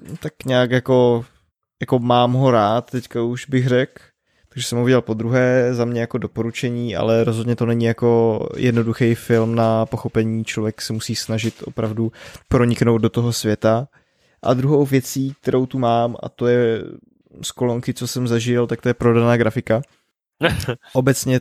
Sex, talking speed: male, 165 wpm